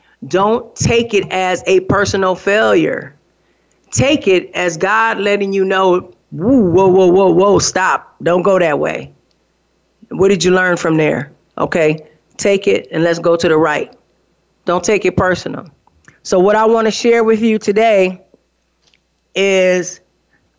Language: English